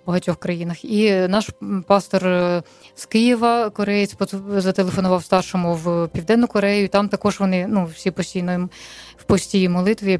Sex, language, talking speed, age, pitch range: female, Ukrainian, 140 wpm, 20-39, 175-205 Hz